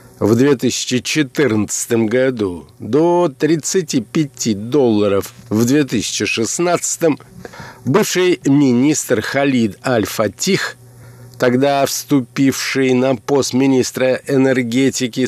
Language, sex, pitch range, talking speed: Russian, male, 125-160 Hz, 70 wpm